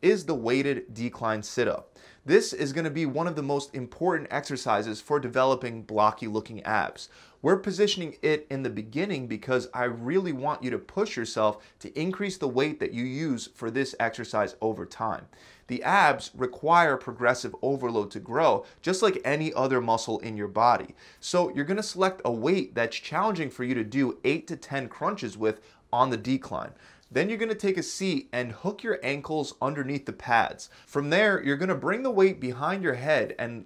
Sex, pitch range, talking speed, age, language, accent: male, 120-165 Hz, 190 wpm, 30-49, English, American